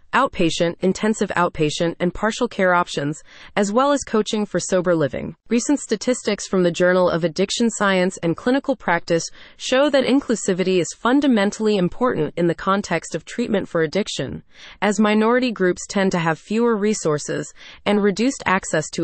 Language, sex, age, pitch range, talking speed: English, female, 30-49, 170-230 Hz, 160 wpm